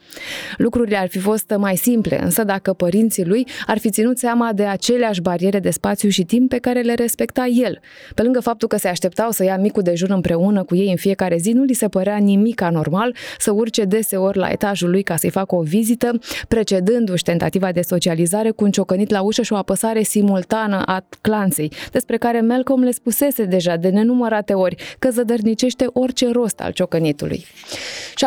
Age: 20-39